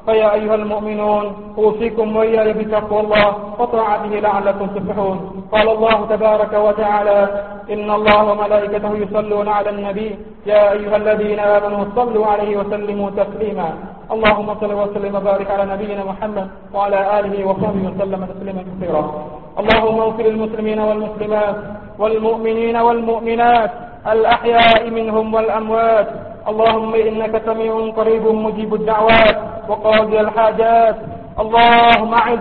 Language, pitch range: Thai, 210-230 Hz